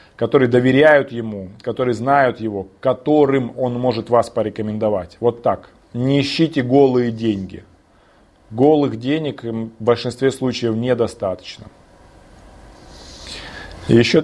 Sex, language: male, Russian